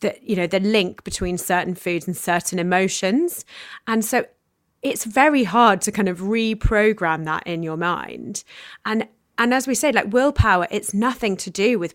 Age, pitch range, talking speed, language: 30-49, 180-225 Hz, 180 wpm, English